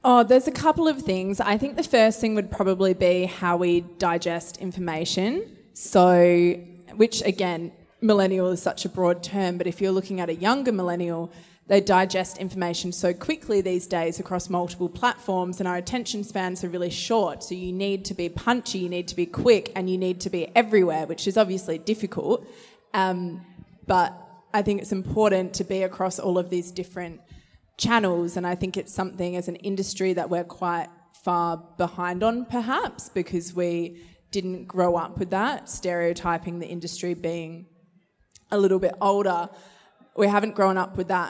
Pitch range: 175-195 Hz